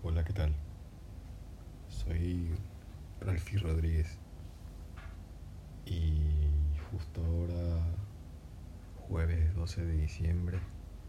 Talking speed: 70 wpm